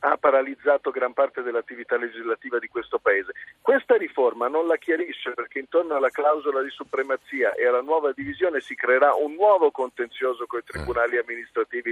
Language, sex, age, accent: Italian, male, 50-69, native